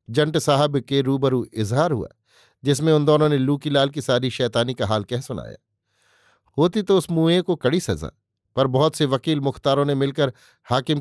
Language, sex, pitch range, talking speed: Hindi, male, 125-155 Hz, 185 wpm